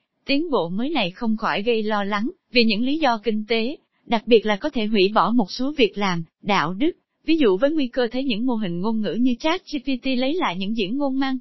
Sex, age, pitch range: female, 20-39, 215-280 Hz